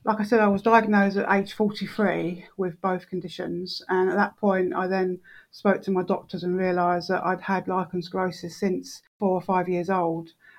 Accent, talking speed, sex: British, 200 wpm, female